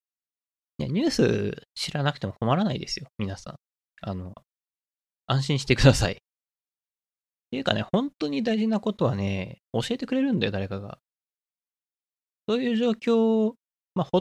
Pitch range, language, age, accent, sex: 95-145 Hz, Japanese, 20-39, native, male